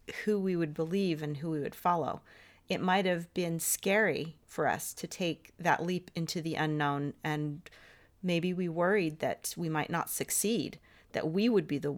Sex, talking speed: female, 185 wpm